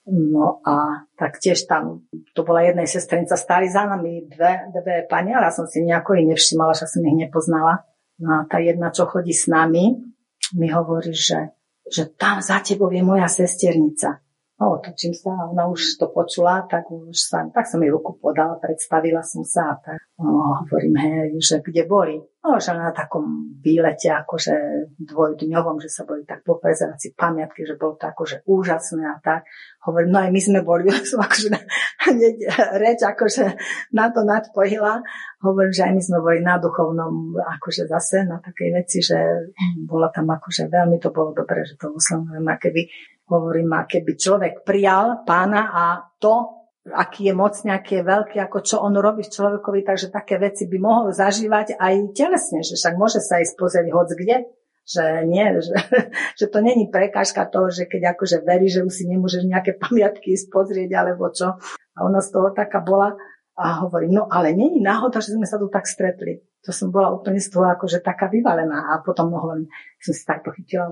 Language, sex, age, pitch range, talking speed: Slovak, female, 40-59, 165-195 Hz, 185 wpm